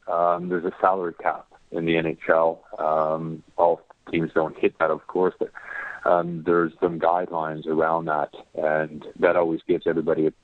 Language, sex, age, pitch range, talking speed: English, male, 40-59, 80-90 Hz, 165 wpm